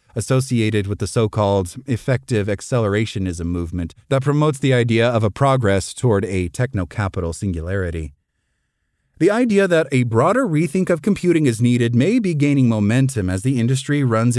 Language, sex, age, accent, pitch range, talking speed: English, male, 30-49, American, 100-140 Hz, 150 wpm